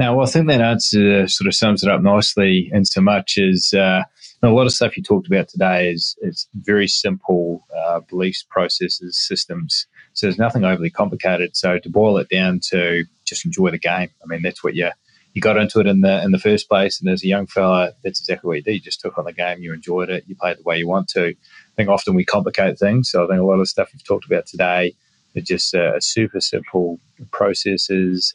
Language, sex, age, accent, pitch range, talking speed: English, male, 20-39, Australian, 90-110 Hz, 240 wpm